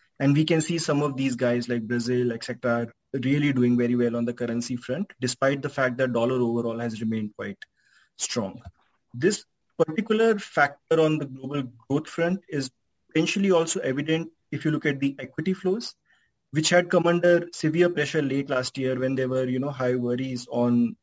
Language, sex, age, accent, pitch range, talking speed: English, male, 20-39, Indian, 125-155 Hz, 190 wpm